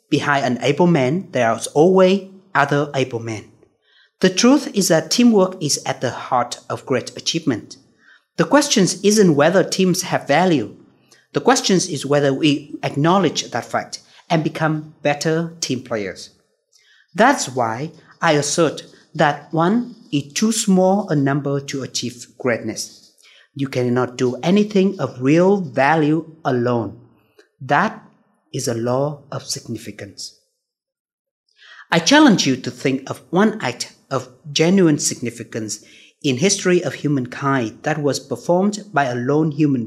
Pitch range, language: 130-190 Hz, Vietnamese